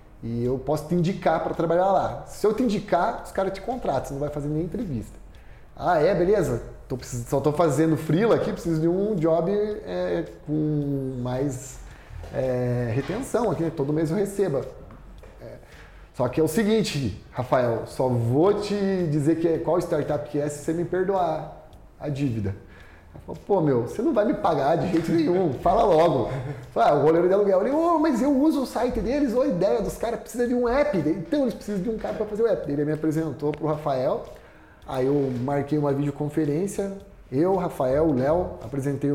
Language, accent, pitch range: Portuguese, Brazilian, 145-195 Hz